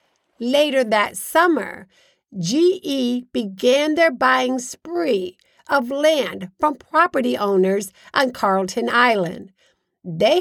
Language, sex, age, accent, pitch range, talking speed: English, female, 50-69, American, 225-305 Hz, 100 wpm